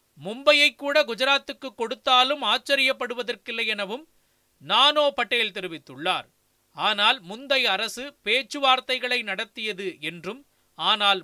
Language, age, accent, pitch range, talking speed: Tamil, 30-49, native, 195-255 Hz, 85 wpm